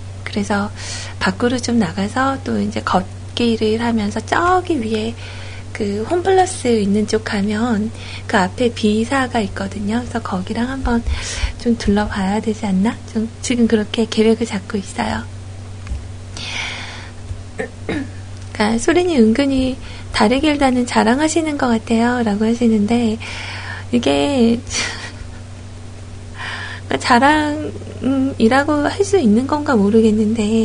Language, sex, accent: Korean, female, native